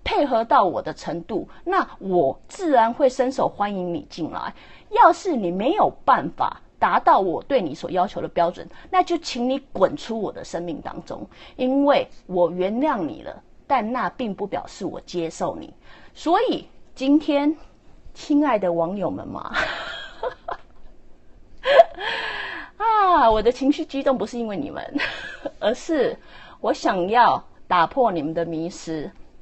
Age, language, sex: 30-49, English, female